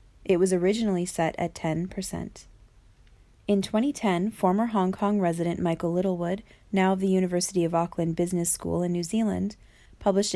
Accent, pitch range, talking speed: American, 165-200 Hz, 150 wpm